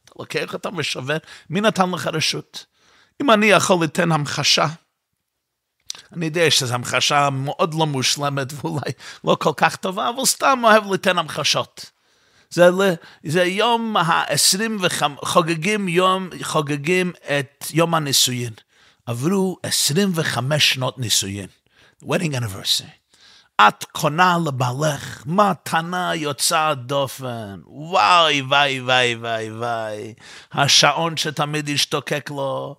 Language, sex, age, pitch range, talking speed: Hebrew, male, 50-69, 125-170 Hz, 110 wpm